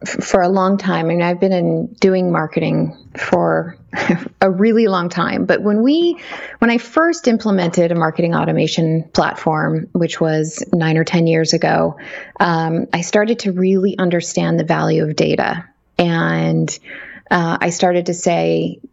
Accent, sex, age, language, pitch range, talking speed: American, female, 20-39, English, 165-195 Hz, 155 wpm